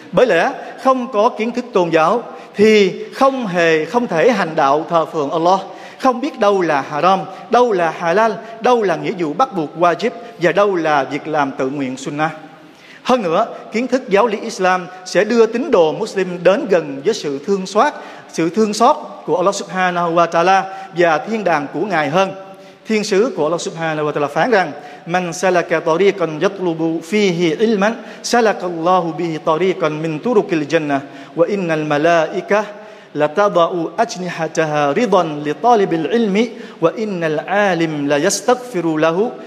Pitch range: 165-210 Hz